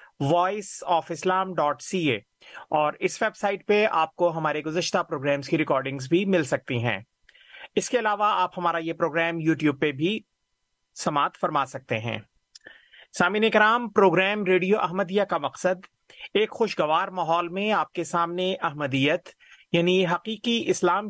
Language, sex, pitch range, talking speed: Urdu, male, 160-195 Hz, 155 wpm